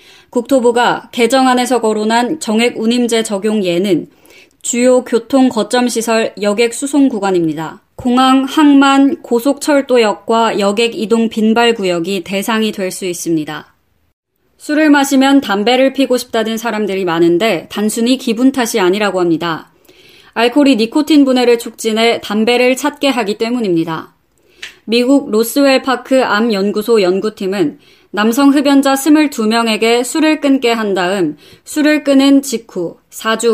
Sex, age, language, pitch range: female, 20-39, Korean, 210-275 Hz